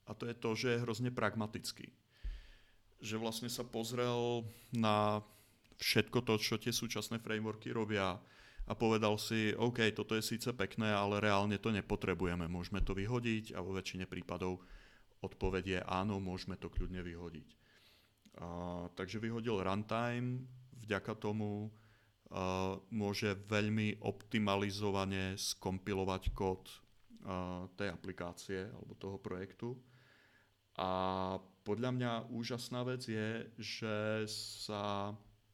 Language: Czech